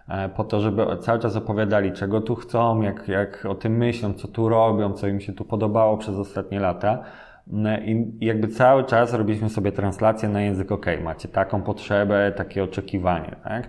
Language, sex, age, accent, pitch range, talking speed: Polish, male, 20-39, native, 100-115 Hz, 180 wpm